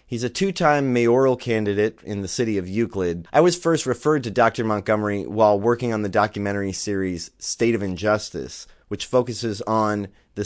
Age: 30-49